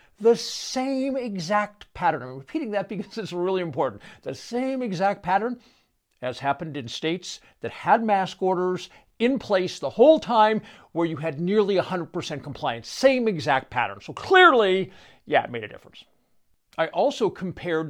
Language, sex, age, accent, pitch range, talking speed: English, male, 60-79, American, 155-230 Hz, 160 wpm